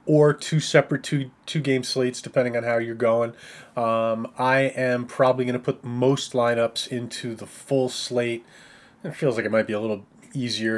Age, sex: 30-49, male